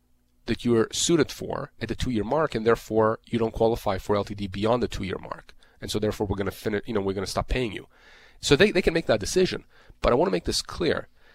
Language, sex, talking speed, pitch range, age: English, male, 235 wpm, 105-135 Hz, 30-49